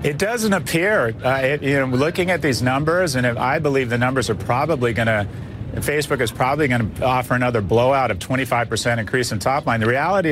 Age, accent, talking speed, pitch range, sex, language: 40-59, American, 215 wpm, 125-150 Hz, male, English